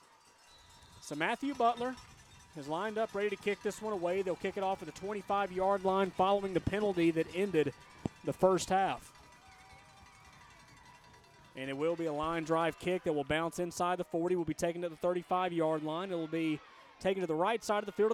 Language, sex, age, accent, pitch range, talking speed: English, male, 30-49, American, 150-200 Hz, 200 wpm